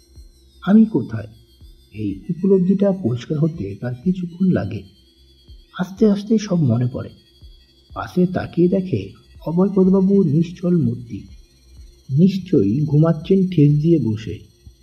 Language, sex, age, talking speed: Bengali, male, 50-69, 65 wpm